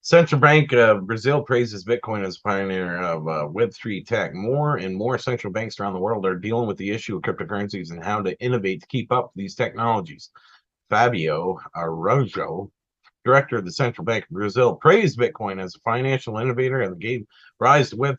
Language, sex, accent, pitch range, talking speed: English, male, American, 100-130 Hz, 190 wpm